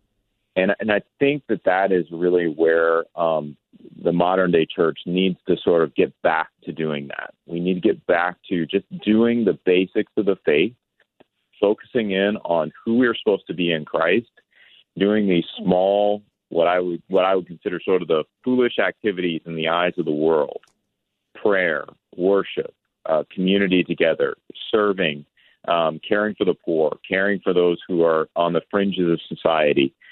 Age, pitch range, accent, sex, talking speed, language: 40-59, 85-105 Hz, American, male, 170 wpm, English